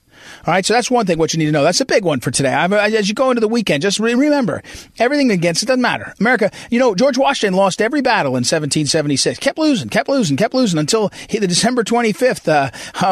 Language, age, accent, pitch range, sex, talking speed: English, 40-59, American, 165-235 Hz, male, 235 wpm